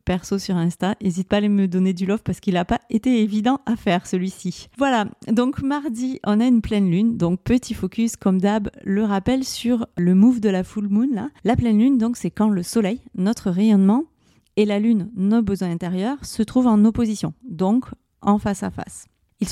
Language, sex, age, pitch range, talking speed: French, female, 30-49, 185-225 Hz, 210 wpm